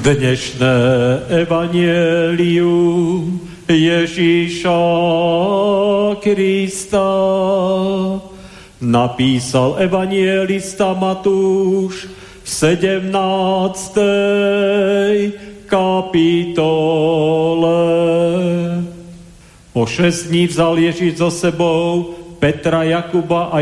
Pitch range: 170-195 Hz